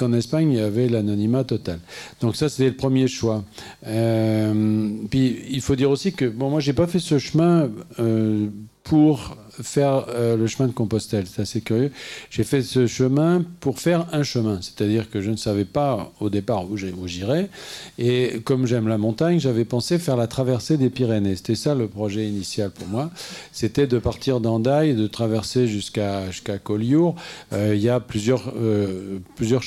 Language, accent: French, French